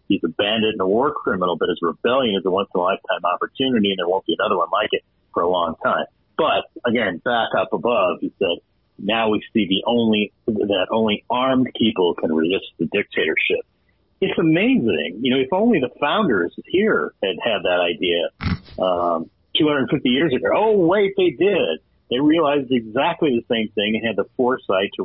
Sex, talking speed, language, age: male, 185 wpm, English, 50-69